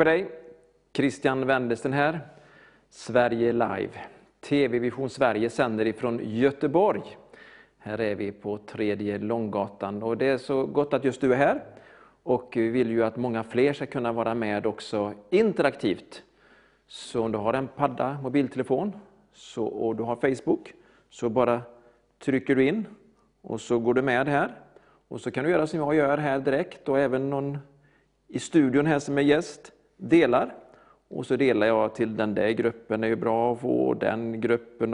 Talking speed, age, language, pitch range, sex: 170 wpm, 40-59, Swedish, 115-145 Hz, male